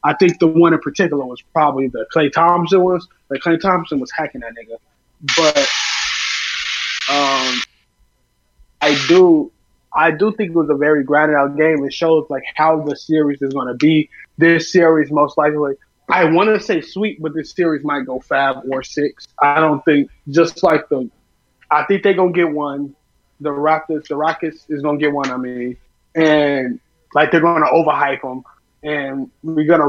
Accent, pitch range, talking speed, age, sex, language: American, 145-175 Hz, 185 wpm, 20-39, male, English